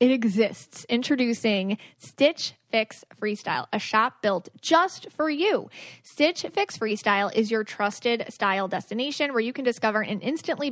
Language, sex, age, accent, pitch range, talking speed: English, female, 30-49, American, 210-275 Hz, 145 wpm